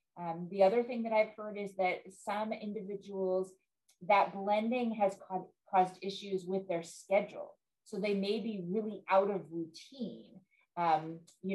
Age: 30-49